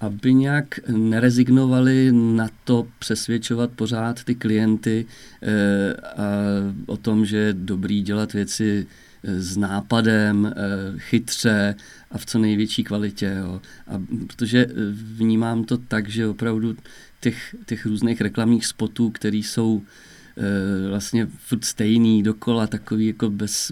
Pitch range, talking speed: 105-120 Hz, 125 wpm